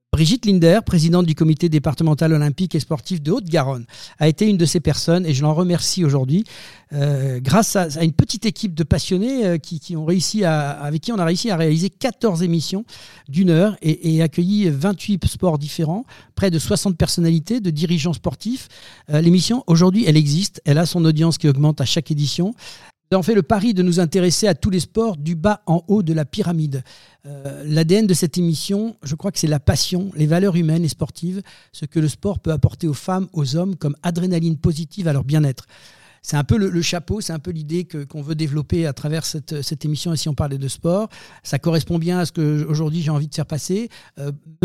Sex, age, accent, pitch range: male, 50-69, French, 150-185 Hz